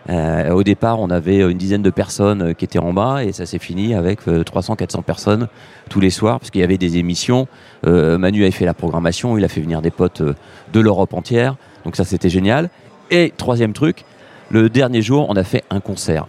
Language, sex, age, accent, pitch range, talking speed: French, male, 40-59, French, 85-115 Hz, 230 wpm